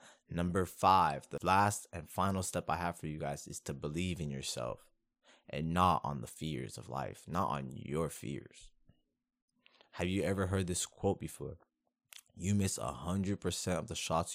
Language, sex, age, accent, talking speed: English, male, 20-39, American, 170 wpm